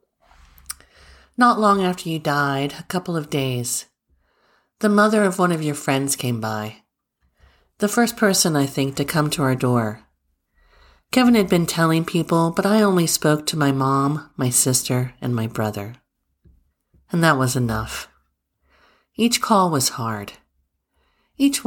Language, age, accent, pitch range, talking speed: English, 50-69, American, 125-165 Hz, 150 wpm